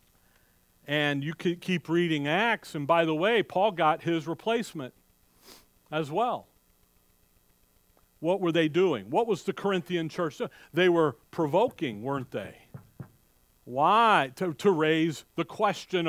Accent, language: American, English